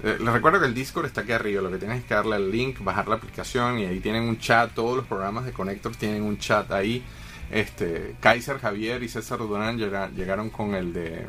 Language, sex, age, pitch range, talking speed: Spanish, male, 30-49, 100-125 Hz, 230 wpm